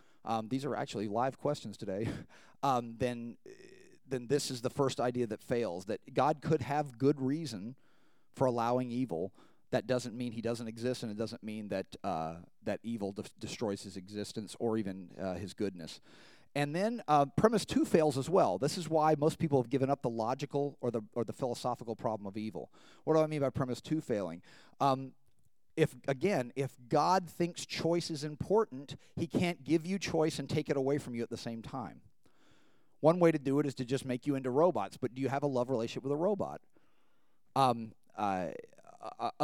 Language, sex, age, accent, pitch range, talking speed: English, male, 40-59, American, 115-150 Hz, 200 wpm